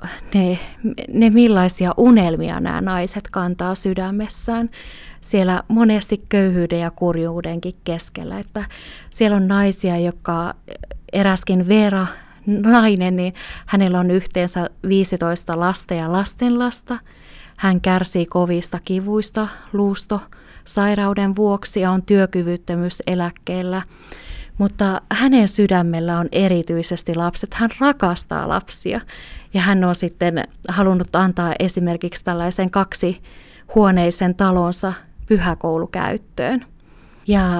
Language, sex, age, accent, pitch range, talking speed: Finnish, female, 20-39, native, 175-205 Hz, 95 wpm